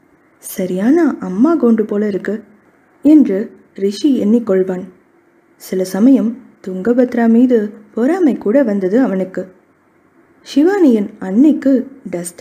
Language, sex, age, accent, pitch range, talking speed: Tamil, female, 20-39, native, 205-270 Hz, 90 wpm